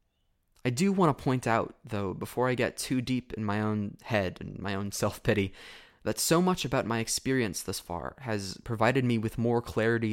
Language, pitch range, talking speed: English, 105-130 Hz, 205 wpm